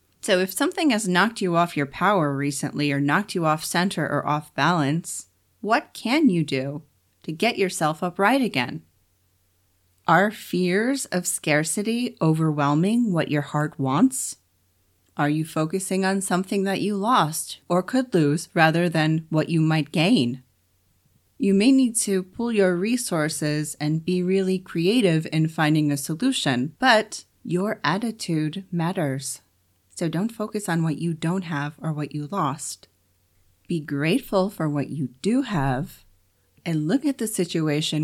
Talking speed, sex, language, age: 150 wpm, female, English, 30-49